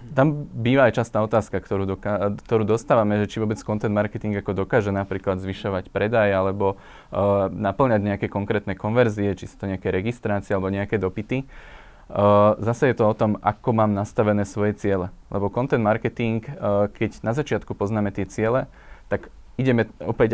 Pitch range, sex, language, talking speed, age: 100-115 Hz, male, Slovak, 170 wpm, 20-39